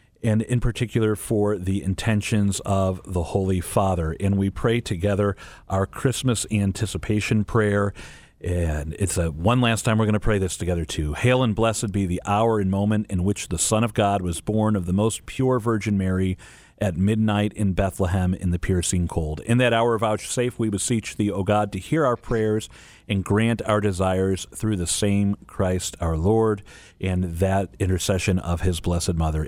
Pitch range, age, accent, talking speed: 95-130 Hz, 40-59, American, 185 wpm